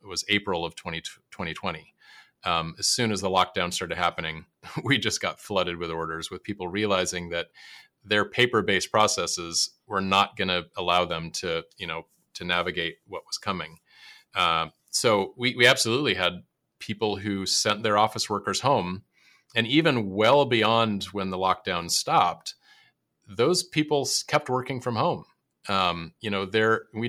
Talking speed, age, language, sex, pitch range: 160 wpm, 30-49, English, male, 90-115 Hz